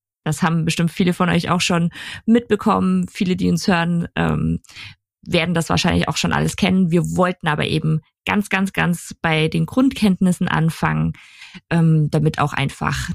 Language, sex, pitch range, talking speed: German, female, 165-210 Hz, 155 wpm